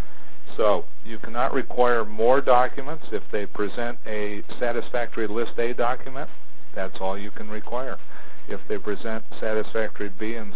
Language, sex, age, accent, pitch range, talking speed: English, male, 50-69, American, 100-110 Hz, 140 wpm